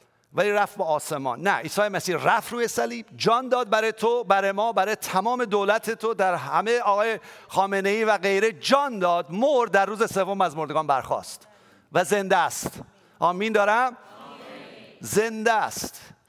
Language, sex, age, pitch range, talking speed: English, male, 50-69, 175-225 Hz, 155 wpm